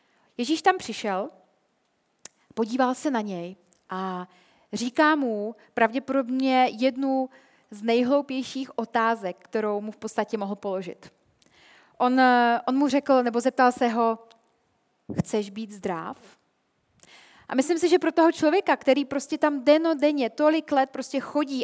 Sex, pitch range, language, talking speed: female, 225-295 Hz, Czech, 130 wpm